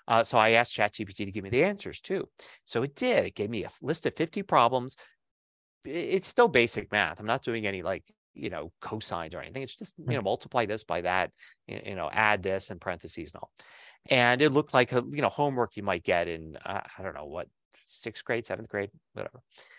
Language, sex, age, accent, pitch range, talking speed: English, male, 30-49, American, 105-130 Hz, 225 wpm